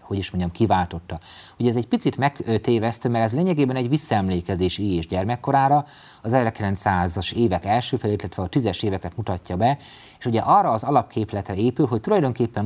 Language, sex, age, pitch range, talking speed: Hungarian, male, 30-49, 95-135 Hz, 175 wpm